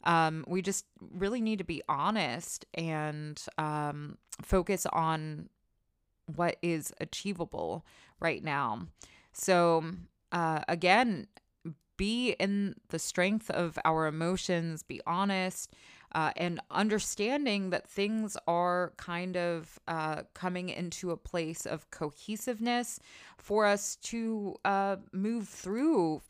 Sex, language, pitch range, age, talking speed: female, English, 155-190 Hz, 20-39, 115 wpm